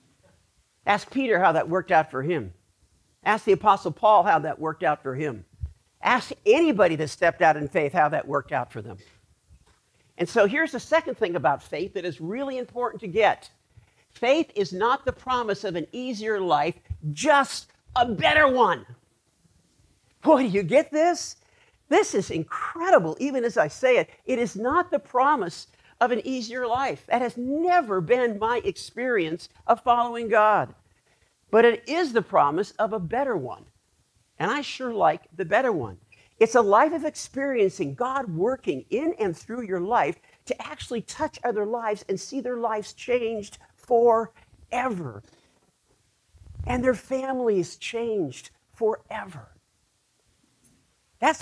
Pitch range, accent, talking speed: 165-260 Hz, American, 155 wpm